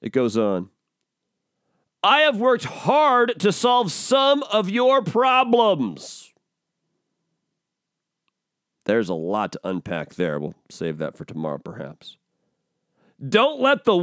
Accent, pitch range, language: American, 185-255 Hz, English